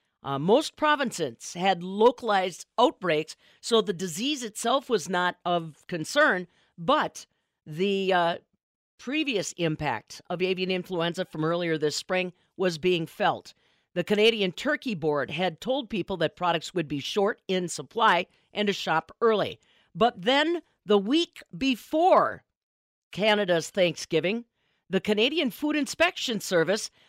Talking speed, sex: 130 wpm, female